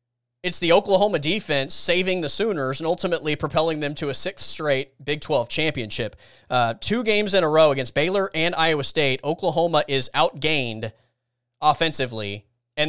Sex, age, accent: male, 20-39, American